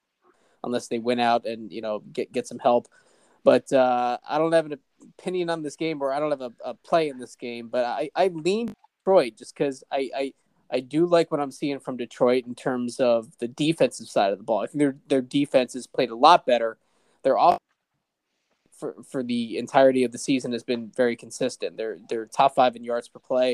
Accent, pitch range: American, 120-145 Hz